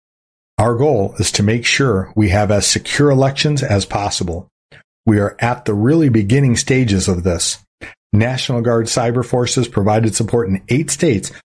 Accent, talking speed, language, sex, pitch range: American, 160 wpm, English, male, 95-130 Hz